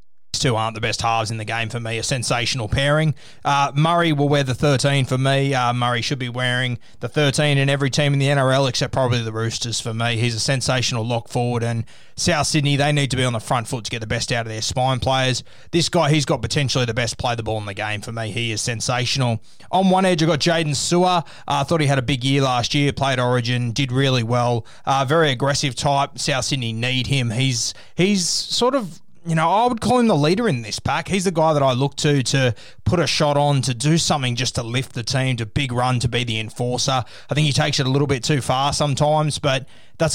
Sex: male